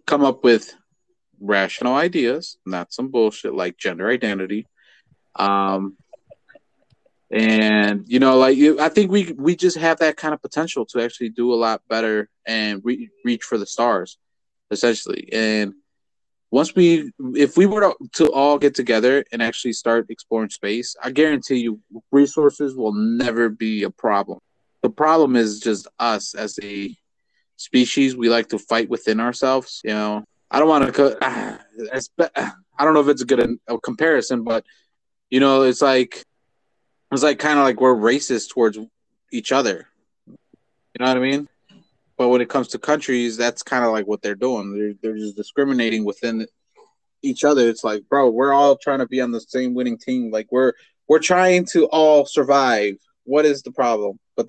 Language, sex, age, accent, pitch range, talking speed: English, male, 20-39, American, 110-145 Hz, 170 wpm